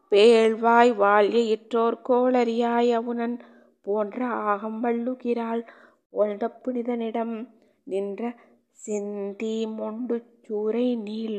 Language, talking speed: Tamil, 60 wpm